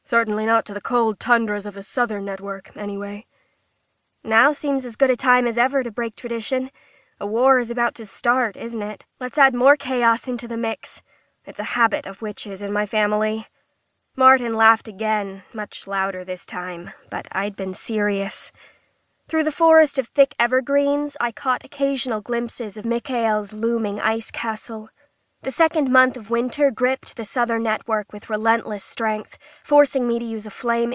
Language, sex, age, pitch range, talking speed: English, female, 20-39, 215-255 Hz, 175 wpm